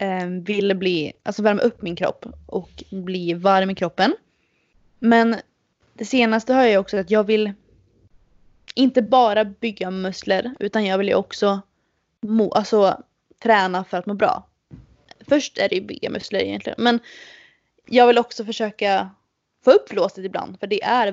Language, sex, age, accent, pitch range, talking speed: Swedish, female, 20-39, native, 190-235 Hz, 160 wpm